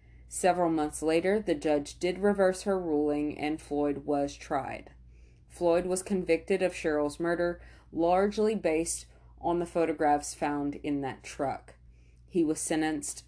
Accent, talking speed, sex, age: American, 140 wpm, female, 30-49